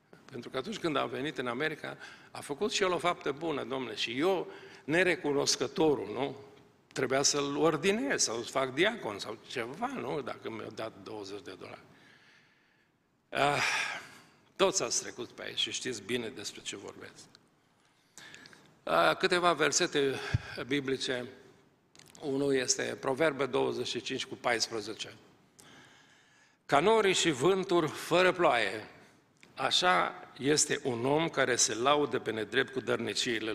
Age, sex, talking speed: 50-69, male, 125 wpm